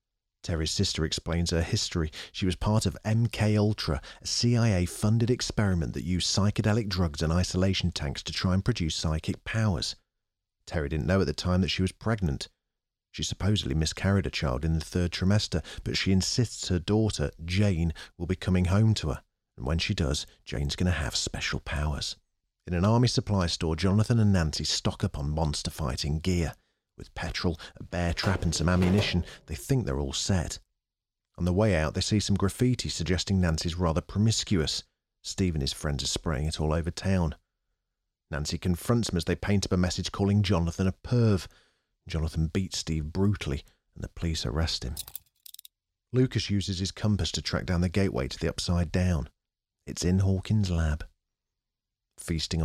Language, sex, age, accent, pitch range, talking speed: English, male, 40-59, British, 80-100 Hz, 175 wpm